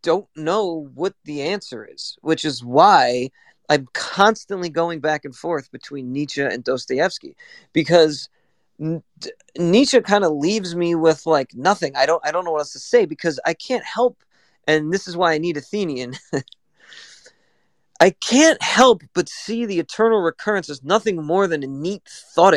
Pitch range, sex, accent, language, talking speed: 145-195 Hz, male, American, English, 175 wpm